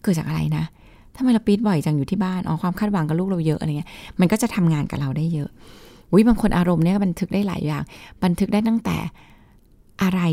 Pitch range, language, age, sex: 155-195 Hz, Thai, 20-39, female